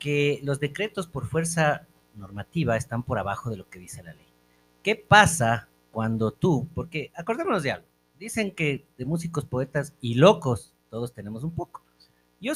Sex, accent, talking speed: male, Mexican, 165 wpm